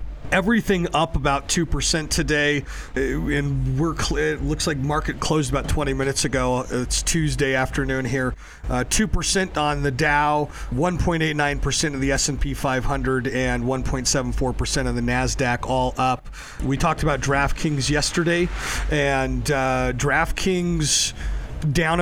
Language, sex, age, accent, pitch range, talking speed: English, male, 40-59, American, 135-165 Hz, 170 wpm